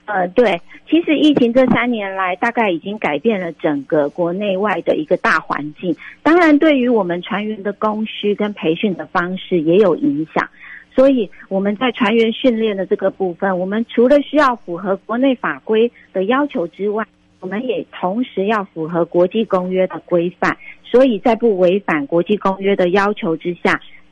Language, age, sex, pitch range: Chinese, 50-69, female, 180-235 Hz